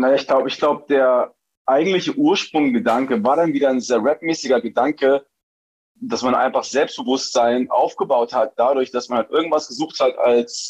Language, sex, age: German, male, 30-49